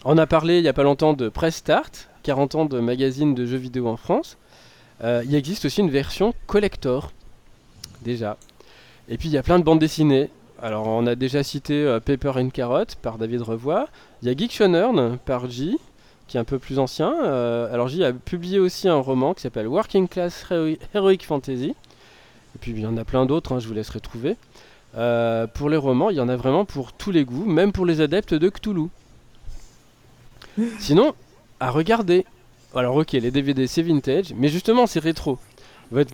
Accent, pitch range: French, 125-160 Hz